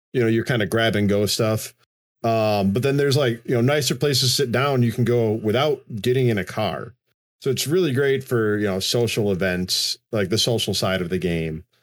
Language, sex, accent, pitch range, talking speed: English, male, American, 110-140 Hz, 230 wpm